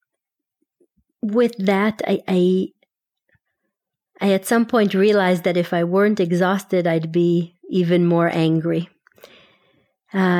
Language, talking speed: English, 115 wpm